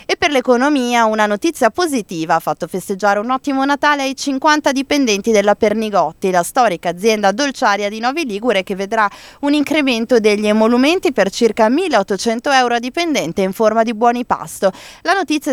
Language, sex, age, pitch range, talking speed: Italian, female, 20-39, 200-265 Hz, 165 wpm